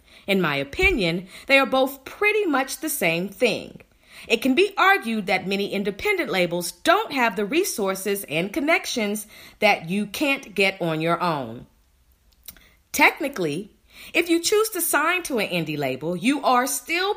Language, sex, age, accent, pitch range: Japanese, female, 40-59, American, 185-275 Hz